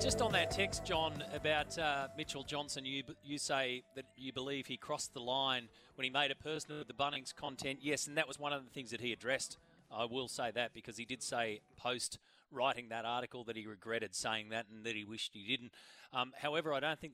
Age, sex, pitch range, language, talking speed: 30-49, male, 115-135 Hz, English, 230 wpm